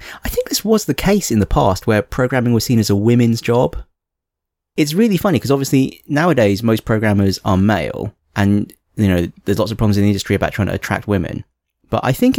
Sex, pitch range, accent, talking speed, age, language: male, 95-115 Hz, British, 220 wpm, 20-39, English